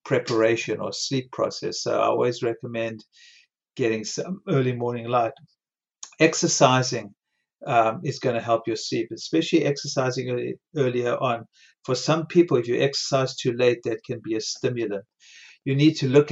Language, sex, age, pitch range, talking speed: English, male, 50-69, 115-140 Hz, 155 wpm